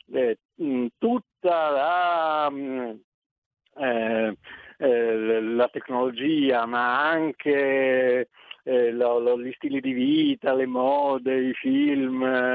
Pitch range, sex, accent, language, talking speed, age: 125-185 Hz, male, native, Italian, 70 wpm, 60-79